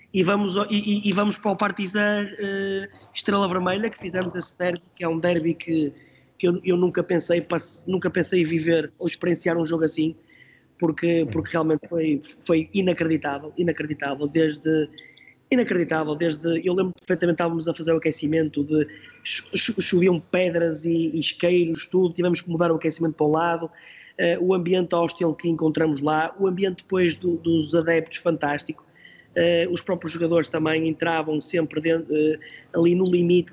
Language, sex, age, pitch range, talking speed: Portuguese, male, 20-39, 160-190 Hz, 165 wpm